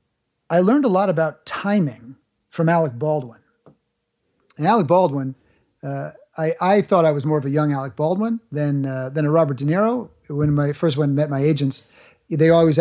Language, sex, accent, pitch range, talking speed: English, male, American, 145-185 Hz, 190 wpm